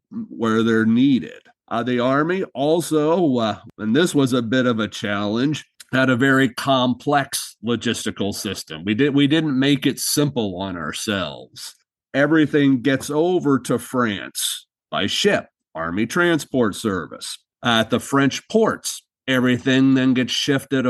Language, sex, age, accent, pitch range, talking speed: English, male, 40-59, American, 120-150 Hz, 145 wpm